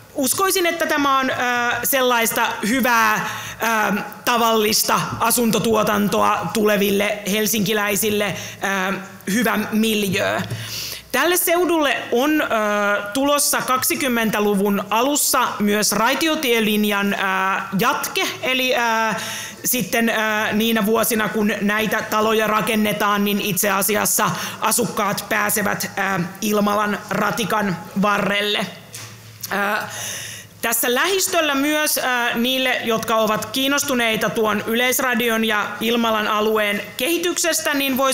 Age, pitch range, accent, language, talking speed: 30-49, 205-240 Hz, native, Finnish, 95 wpm